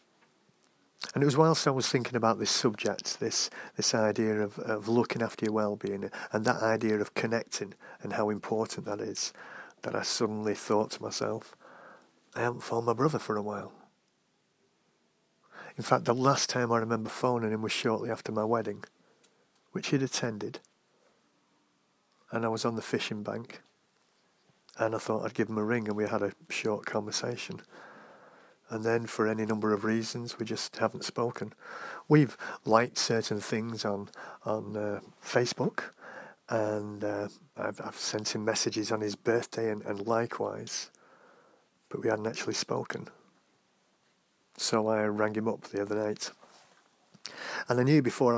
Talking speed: 160 wpm